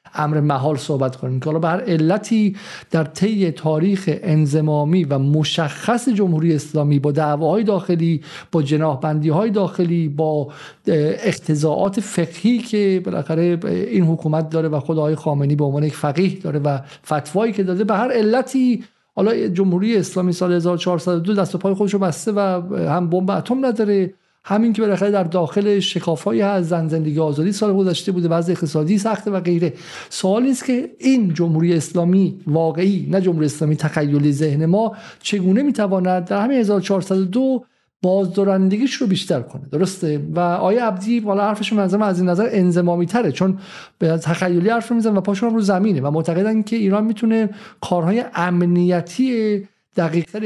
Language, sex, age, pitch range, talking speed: Persian, male, 50-69, 160-205 Hz, 150 wpm